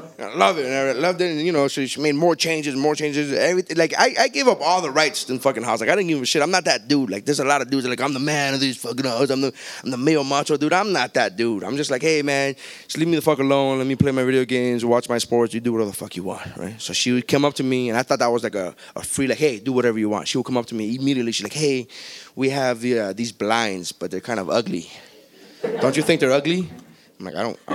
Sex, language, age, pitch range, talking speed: male, English, 20-39, 130-170 Hz, 315 wpm